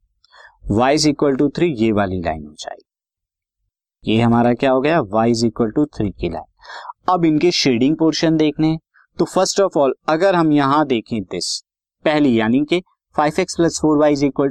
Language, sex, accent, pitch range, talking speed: Hindi, male, native, 110-150 Hz, 180 wpm